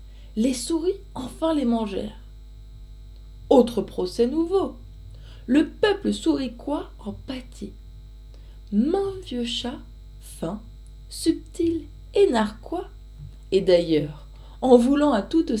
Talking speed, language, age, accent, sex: 100 wpm, French, 20-39, French, female